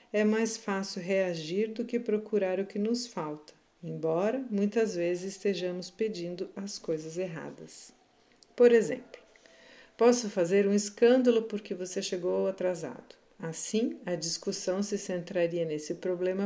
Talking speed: 130 wpm